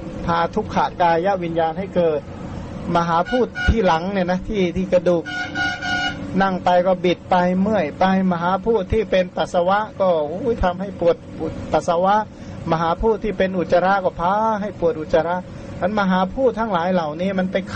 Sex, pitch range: male, 170-200 Hz